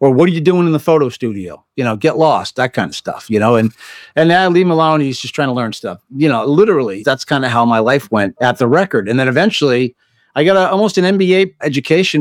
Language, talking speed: English, 270 wpm